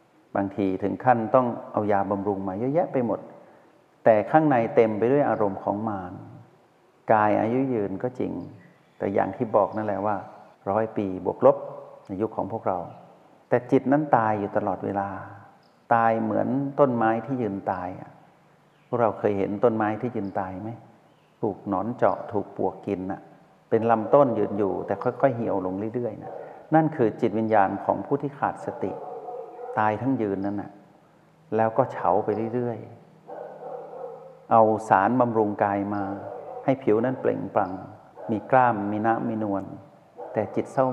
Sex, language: male, Thai